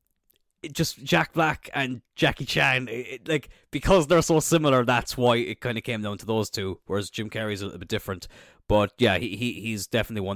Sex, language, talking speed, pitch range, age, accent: male, English, 210 wpm, 95-135 Hz, 20-39, Irish